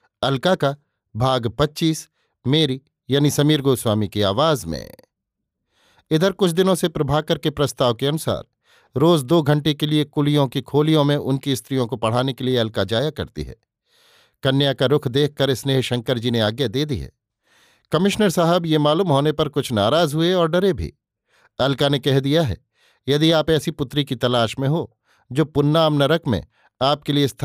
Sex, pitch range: male, 120-150 Hz